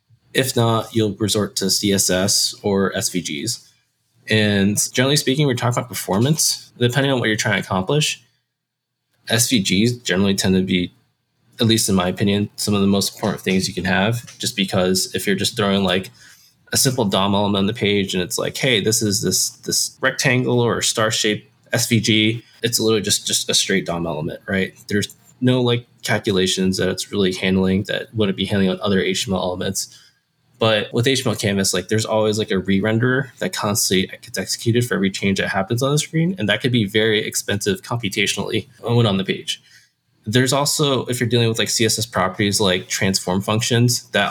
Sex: male